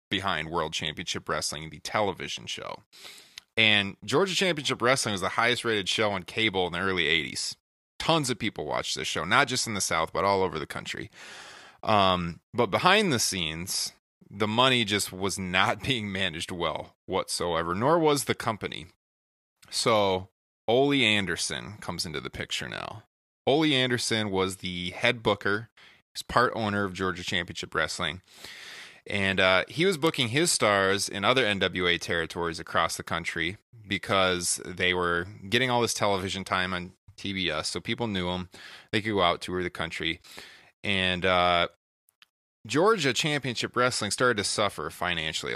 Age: 20-39